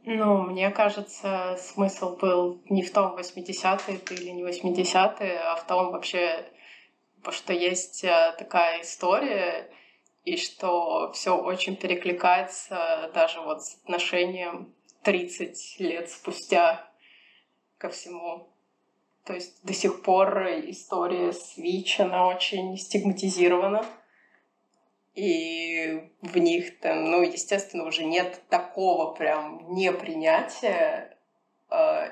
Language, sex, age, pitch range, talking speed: Russian, female, 20-39, 175-235 Hz, 105 wpm